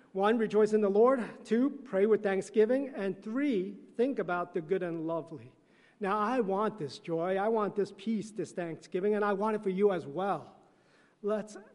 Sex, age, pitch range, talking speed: male, 40-59, 160-195 Hz, 190 wpm